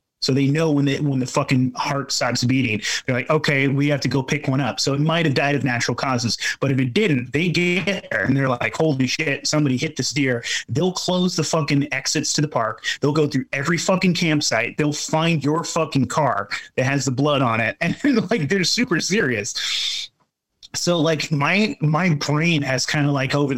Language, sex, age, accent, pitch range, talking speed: English, male, 30-49, American, 130-160 Hz, 220 wpm